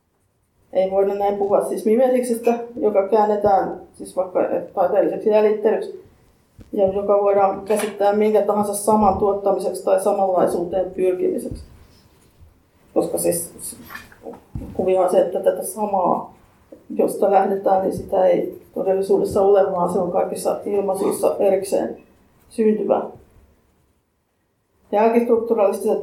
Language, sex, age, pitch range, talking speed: Finnish, female, 30-49, 195-235 Hz, 110 wpm